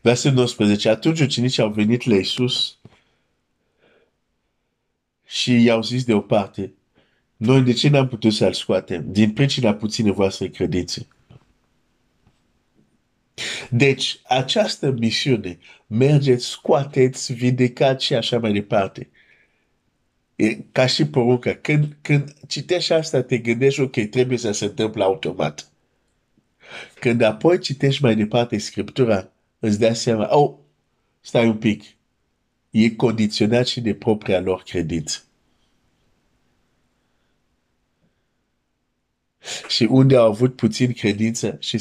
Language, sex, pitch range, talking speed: Romanian, male, 110-130 Hz, 110 wpm